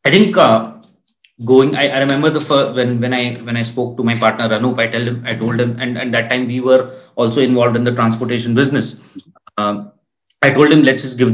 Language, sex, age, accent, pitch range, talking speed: English, male, 30-49, Indian, 115-140 Hz, 235 wpm